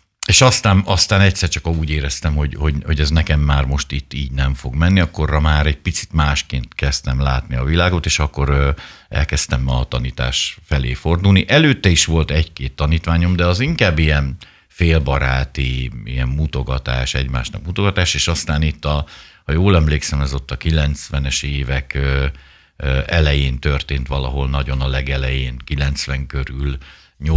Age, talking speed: 60-79, 155 wpm